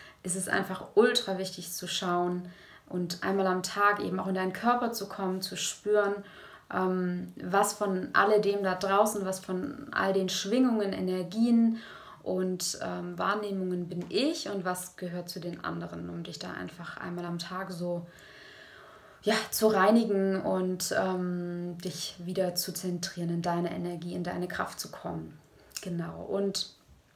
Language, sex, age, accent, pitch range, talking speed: German, female, 20-39, German, 180-200 Hz, 150 wpm